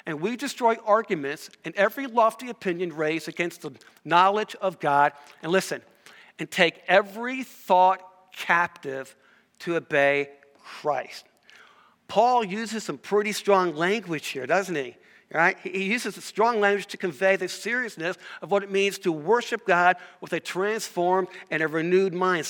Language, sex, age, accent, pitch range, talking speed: English, male, 50-69, American, 170-225 Hz, 150 wpm